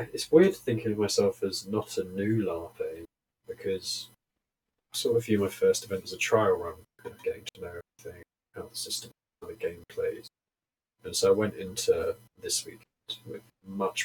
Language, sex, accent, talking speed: English, male, British, 190 wpm